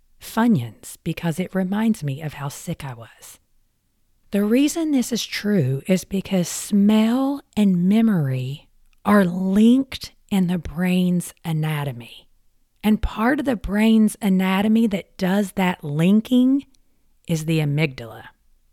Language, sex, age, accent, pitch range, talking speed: English, female, 40-59, American, 140-215 Hz, 125 wpm